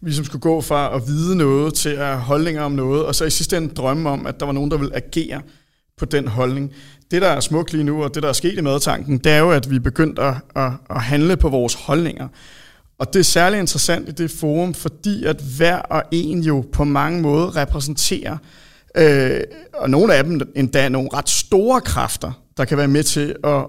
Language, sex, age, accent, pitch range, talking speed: Danish, male, 30-49, native, 140-160 Hz, 230 wpm